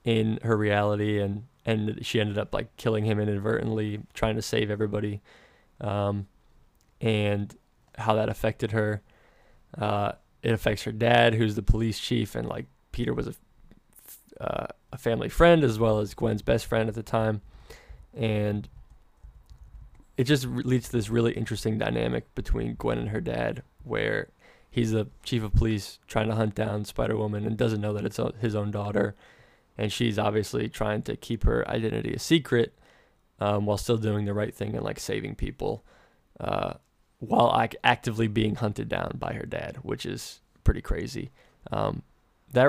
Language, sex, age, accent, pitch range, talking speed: English, male, 20-39, American, 105-115 Hz, 165 wpm